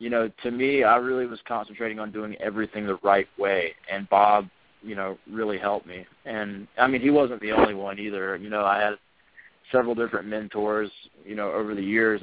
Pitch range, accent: 100-115 Hz, American